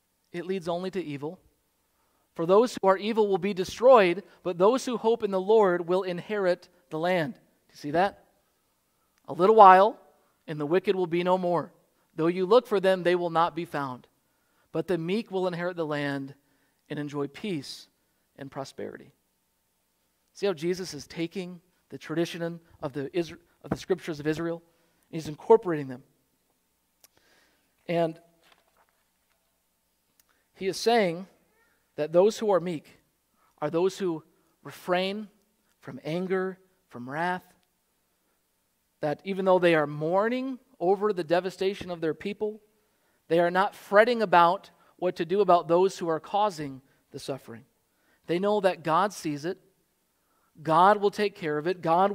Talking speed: 155 wpm